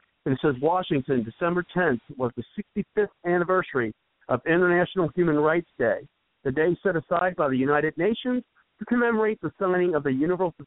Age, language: 50-69, English